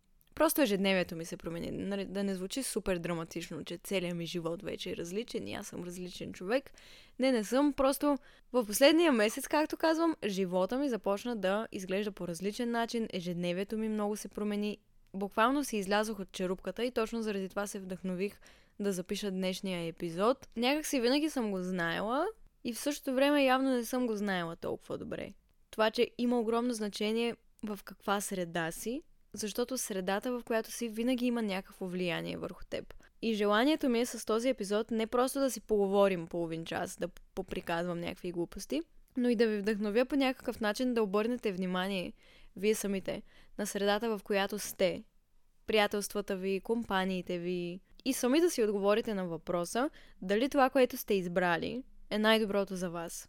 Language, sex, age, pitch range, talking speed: Bulgarian, female, 20-39, 190-245 Hz, 170 wpm